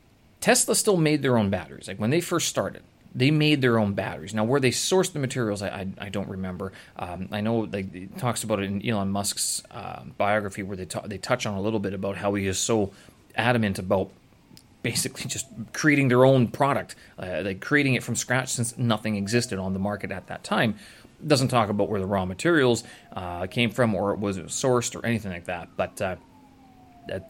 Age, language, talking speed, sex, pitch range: 30-49, English, 220 wpm, male, 100-135 Hz